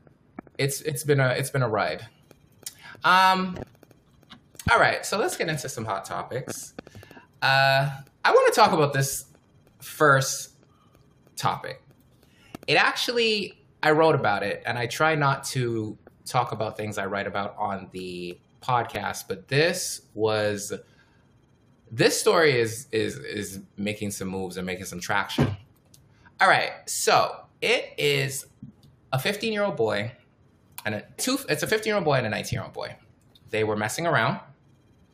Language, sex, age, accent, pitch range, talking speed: English, male, 20-39, American, 105-140 Hz, 150 wpm